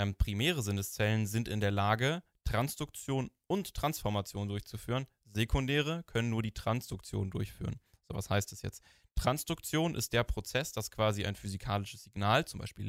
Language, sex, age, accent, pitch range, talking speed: German, male, 10-29, German, 100-125 Hz, 160 wpm